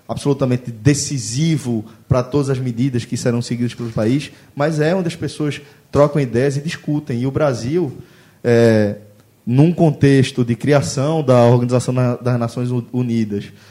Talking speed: 145 wpm